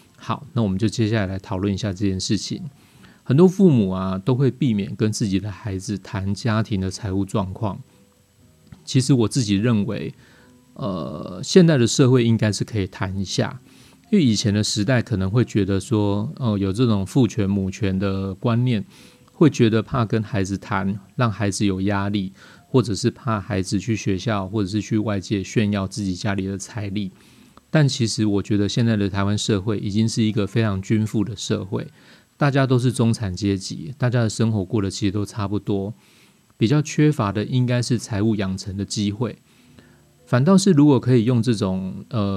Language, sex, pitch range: Chinese, male, 100-120 Hz